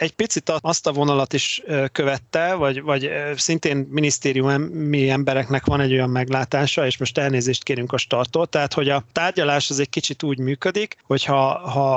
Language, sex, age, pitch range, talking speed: Hungarian, male, 30-49, 130-155 Hz, 165 wpm